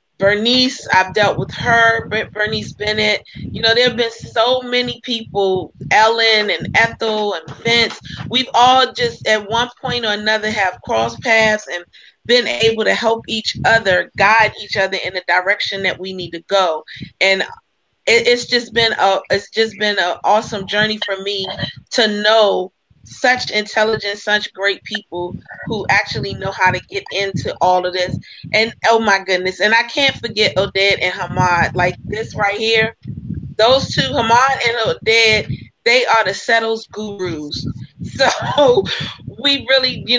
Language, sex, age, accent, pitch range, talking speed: English, female, 30-49, American, 190-230 Hz, 165 wpm